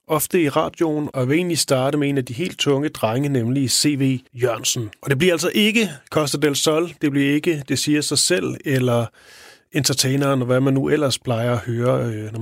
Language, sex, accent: Danish, male, native